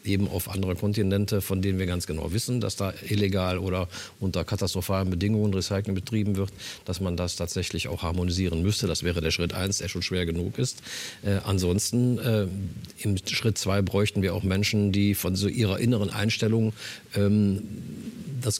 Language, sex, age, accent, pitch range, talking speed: German, male, 40-59, German, 95-110 Hz, 175 wpm